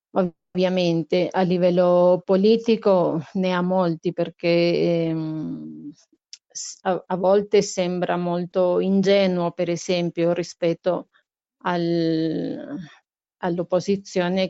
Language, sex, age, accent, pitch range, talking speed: Italian, female, 30-49, native, 160-185 Hz, 80 wpm